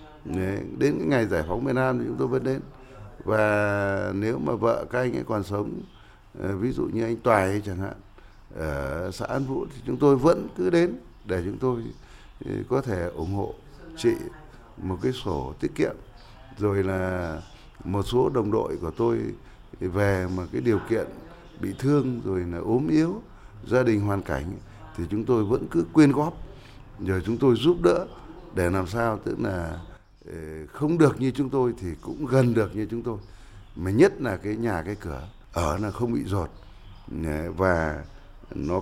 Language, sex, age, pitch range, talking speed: Vietnamese, male, 60-79, 95-125 Hz, 180 wpm